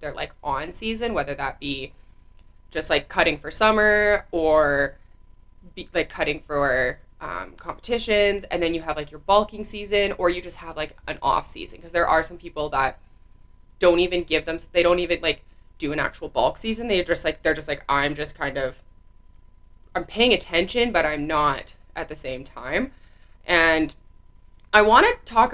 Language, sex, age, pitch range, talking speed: English, female, 20-39, 145-205 Hz, 185 wpm